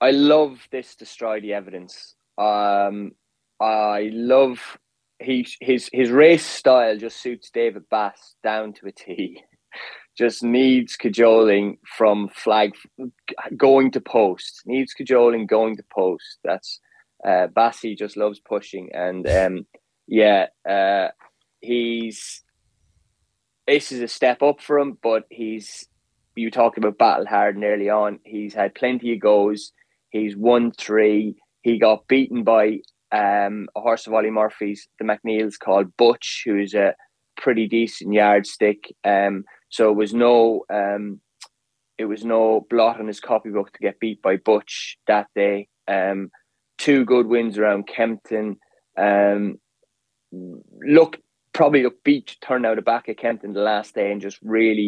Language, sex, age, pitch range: English, male, 20-39, 100-120 Hz